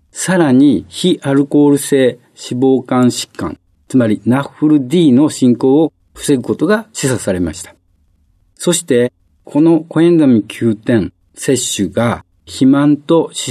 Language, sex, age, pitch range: Japanese, male, 50-69, 110-155 Hz